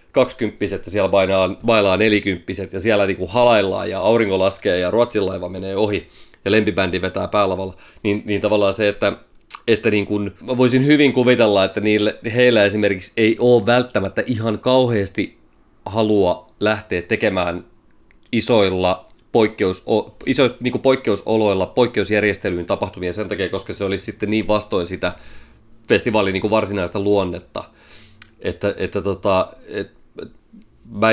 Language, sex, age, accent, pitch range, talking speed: Finnish, male, 30-49, native, 95-115 Hz, 130 wpm